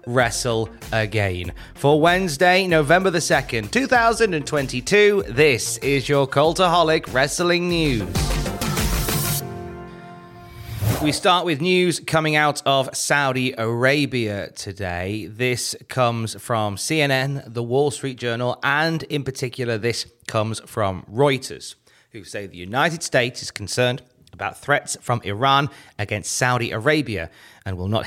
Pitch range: 110-145 Hz